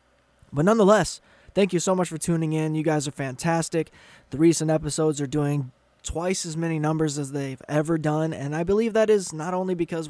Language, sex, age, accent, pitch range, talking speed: English, male, 20-39, American, 145-185 Hz, 200 wpm